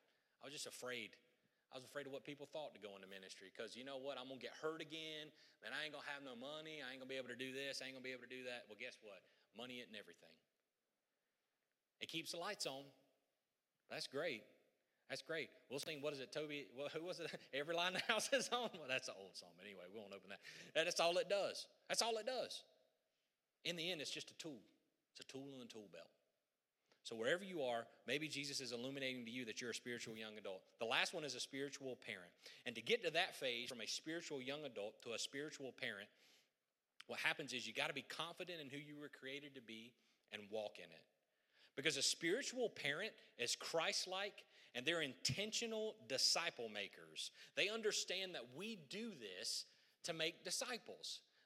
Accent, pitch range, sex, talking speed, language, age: American, 125-170 Hz, male, 225 wpm, English, 30-49